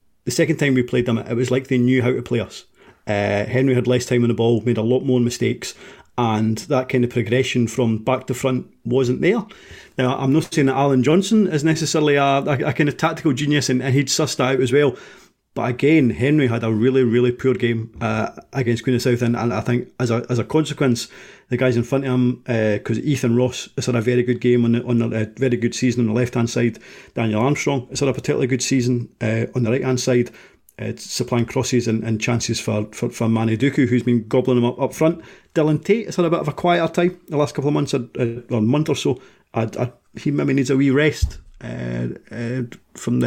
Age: 30-49